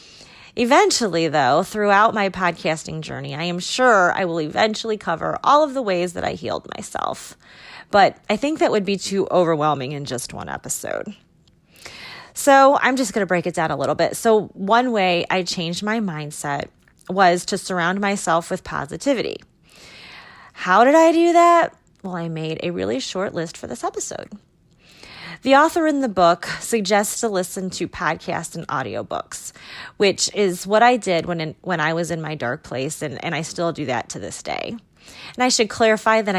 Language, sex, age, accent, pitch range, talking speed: English, female, 30-49, American, 170-225 Hz, 185 wpm